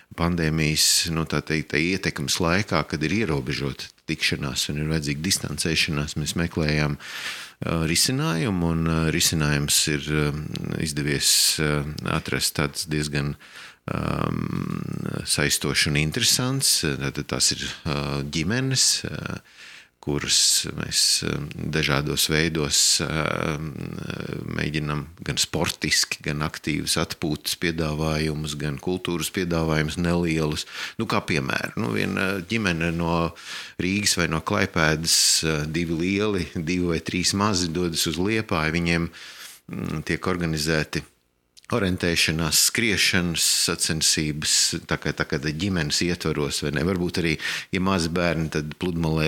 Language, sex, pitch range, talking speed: English, male, 75-90 Hz, 100 wpm